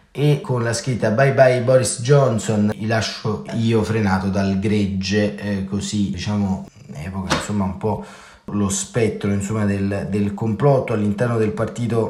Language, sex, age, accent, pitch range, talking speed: Italian, male, 30-49, native, 100-115 Hz, 155 wpm